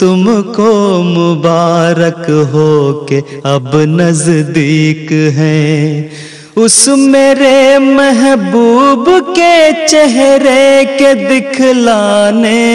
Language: English